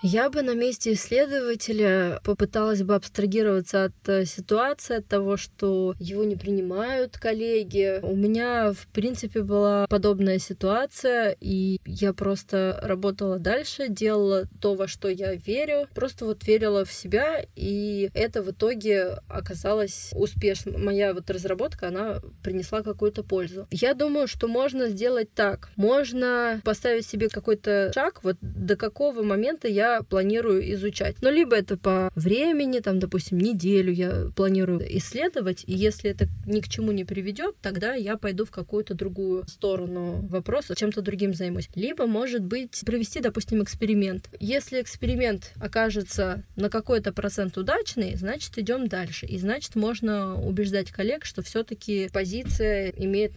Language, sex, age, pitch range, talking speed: Russian, female, 20-39, 195-225 Hz, 140 wpm